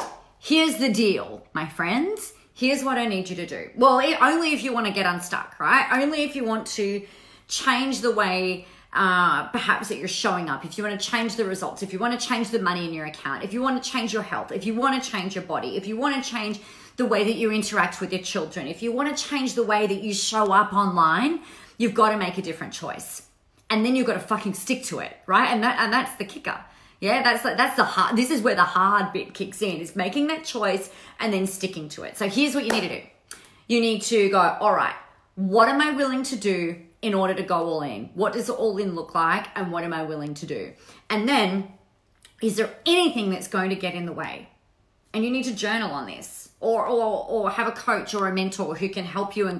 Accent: Australian